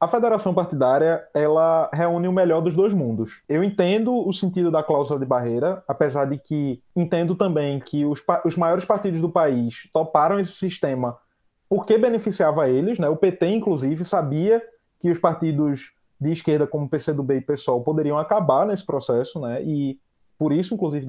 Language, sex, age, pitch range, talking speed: Portuguese, male, 20-39, 150-205 Hz, 175 wpm